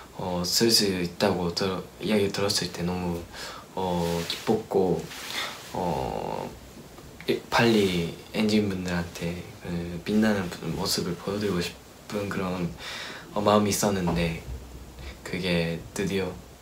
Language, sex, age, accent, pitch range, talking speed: English, male, 20-39, Korean, 85-105 Hz, 85 wpm